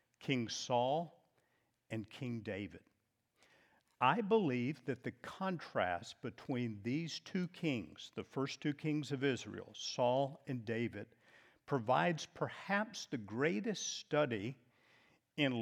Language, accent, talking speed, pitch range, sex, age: English, American, 110 wpm, 115-155 Hz, male, 50-69